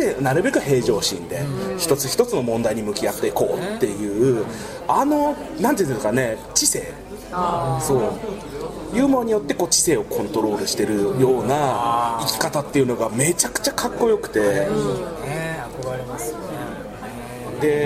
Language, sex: Japanese, male